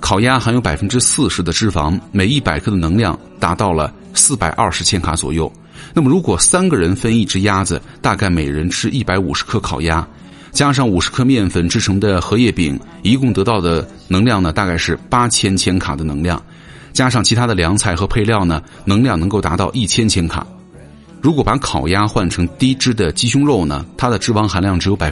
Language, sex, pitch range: Chinese, male, 85-115 Hz